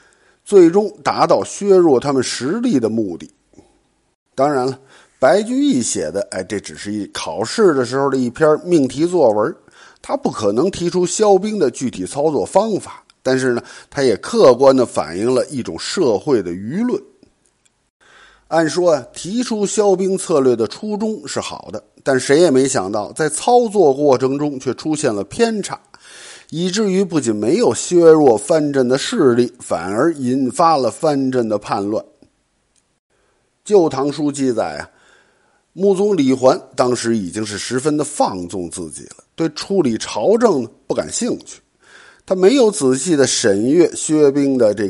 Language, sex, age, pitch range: Chinese, male, 50-69, 130-190 Hz